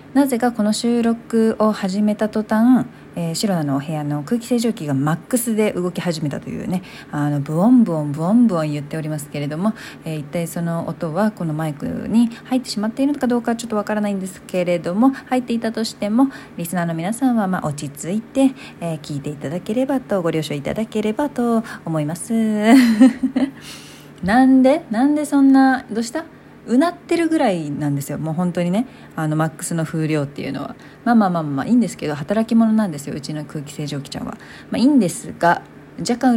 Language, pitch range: Japanese, 160-235 Hz